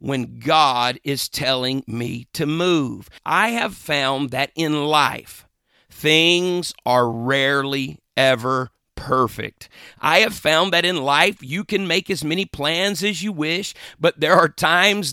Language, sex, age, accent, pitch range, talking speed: English, male, 50-69, American, 135-190 Hz, 145 wpm